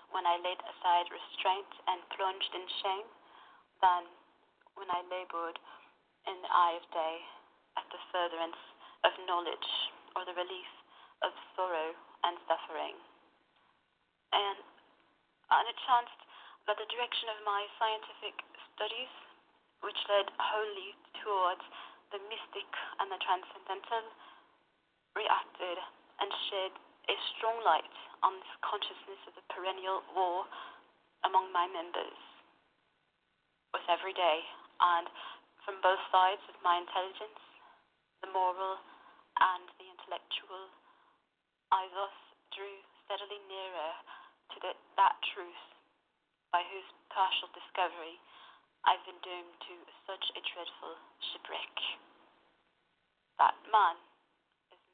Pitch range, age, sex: 180-230 Hz, 30-49, female